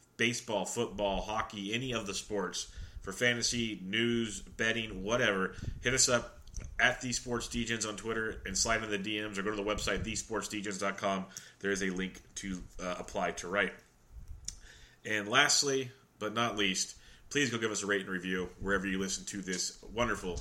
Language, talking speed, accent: English, 175 wpm, American